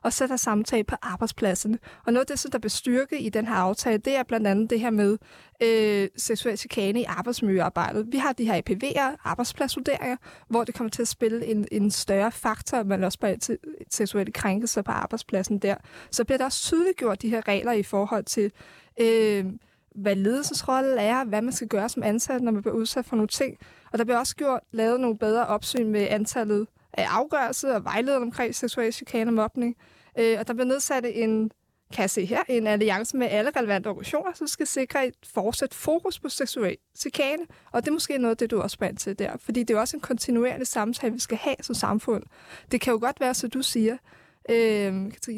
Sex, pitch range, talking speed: female, 215-255 Hz, 210 wpm